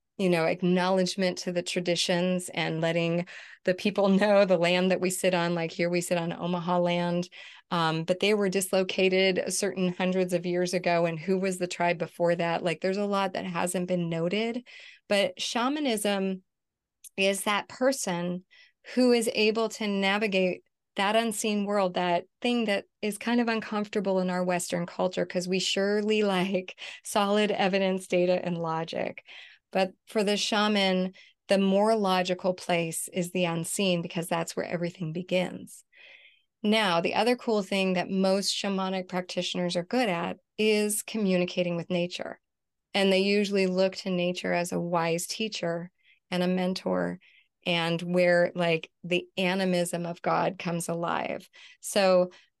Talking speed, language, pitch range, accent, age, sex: 155 wpm, English, 175-200 Hz, American, 30-49, female